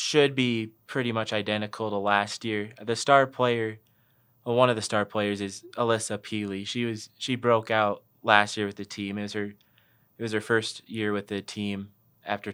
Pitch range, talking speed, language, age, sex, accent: 100-115 Hz, 200 wpm, English, 20-39, male, American